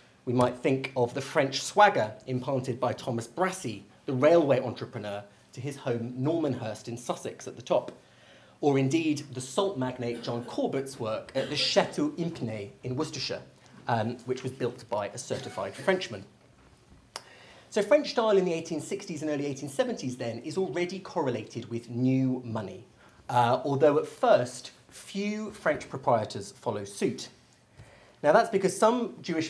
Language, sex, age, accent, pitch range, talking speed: English, male, 30-49, British, 120-175 Hz, 155 wpm